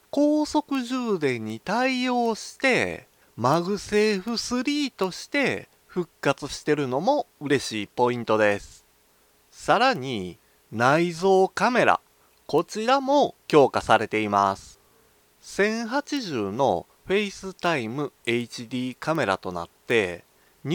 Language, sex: Japanese, male